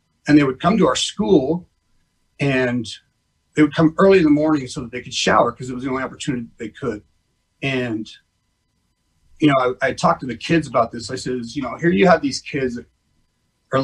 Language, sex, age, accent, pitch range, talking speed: English, male, 40-59, American, 120-165 Hz, 215 wpm